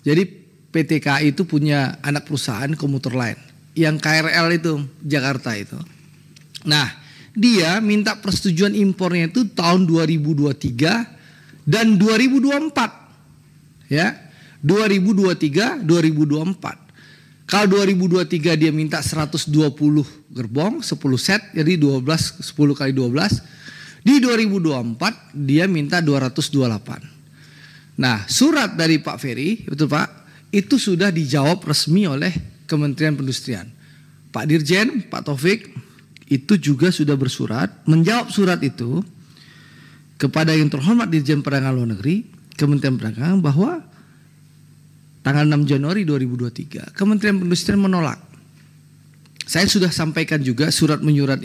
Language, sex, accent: Indonesian, male, native